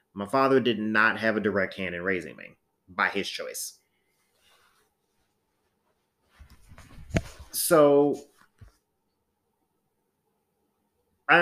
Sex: male